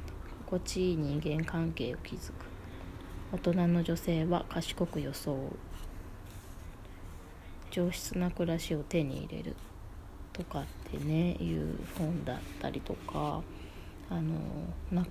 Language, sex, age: Japanese, female, 20-39